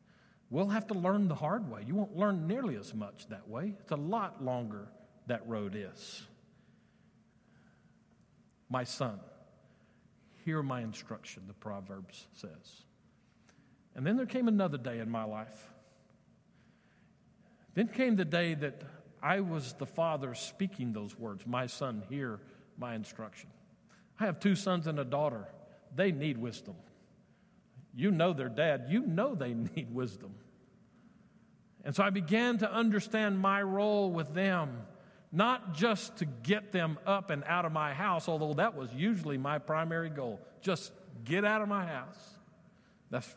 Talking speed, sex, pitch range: 150 wpm, male, 135-190 Hz